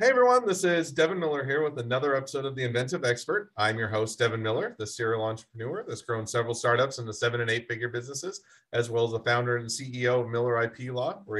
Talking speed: 225 wpm